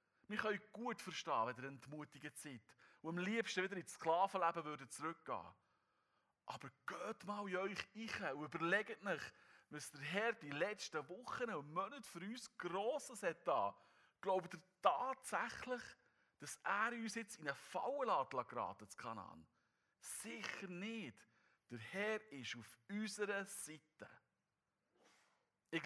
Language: German